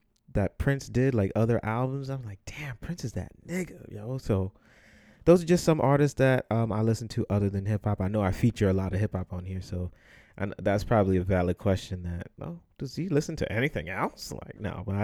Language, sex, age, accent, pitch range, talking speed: English, male, 20-39, American, 100-130 Hz, 225 wpm